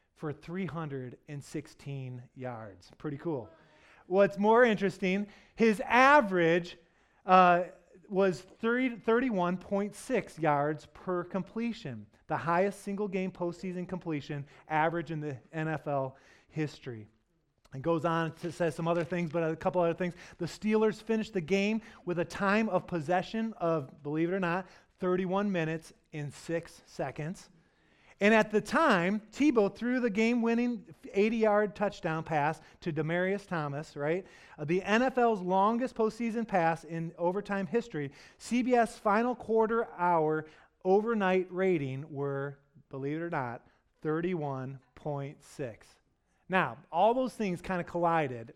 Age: 30-49